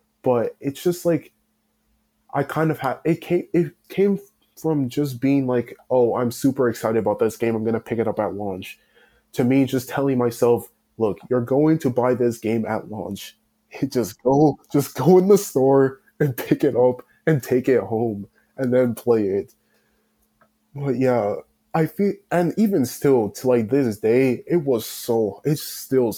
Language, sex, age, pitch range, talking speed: English, male, 20-39, 115-150 Hz, 185 wpm